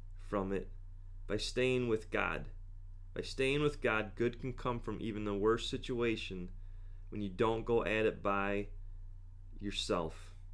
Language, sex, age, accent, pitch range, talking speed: English, male, 30-49, American, 95-115 Hz, 150 wpm